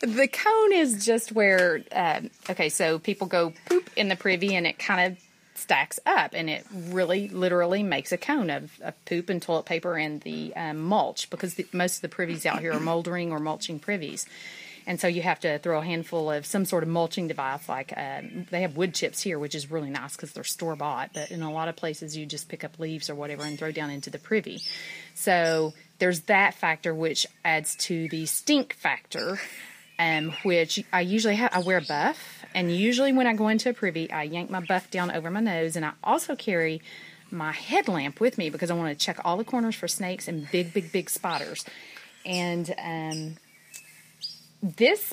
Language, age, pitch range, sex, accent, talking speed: English, 30-49, 165-200 Hz, female, American, 210 wpm